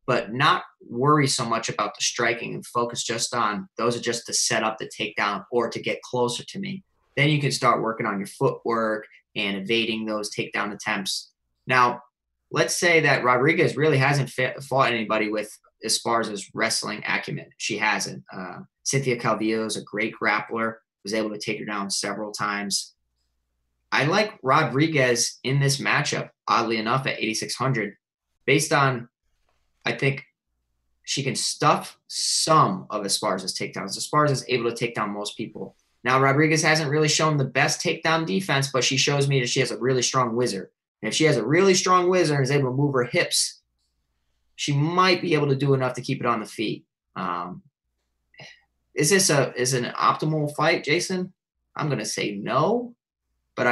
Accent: American